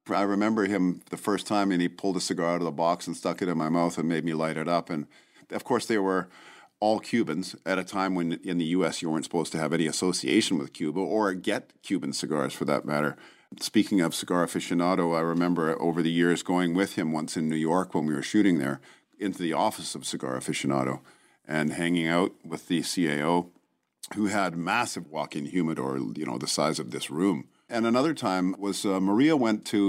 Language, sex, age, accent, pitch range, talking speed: English, male, 50-69, American, 80-95 Hz, 220 wpm